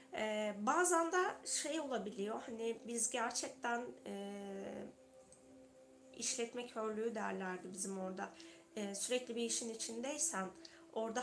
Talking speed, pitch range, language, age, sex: 100 wpm, 215-265 Hz, Turkish, 20-39, female